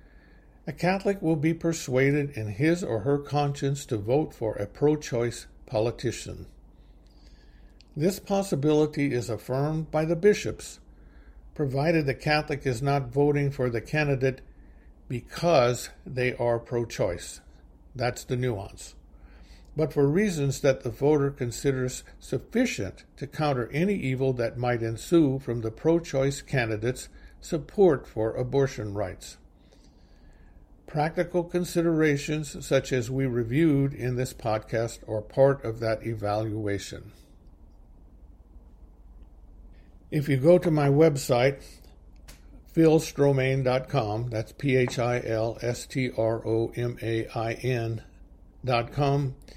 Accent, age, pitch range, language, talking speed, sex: American, 60-79, 105-145 Hz, English, 115 wpm, male